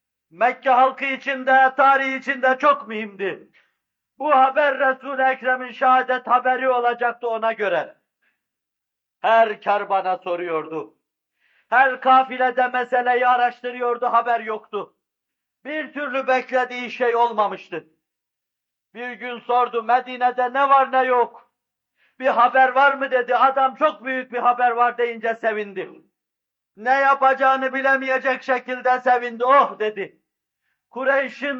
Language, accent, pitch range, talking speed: Turkish, native, 240-265 Hz, 115 wpm